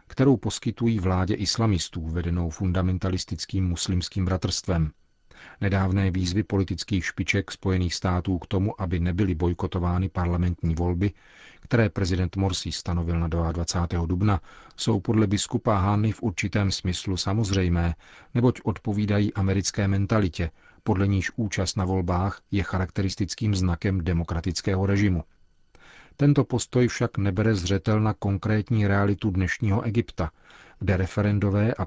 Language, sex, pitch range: Czech, male, 90-105 Hz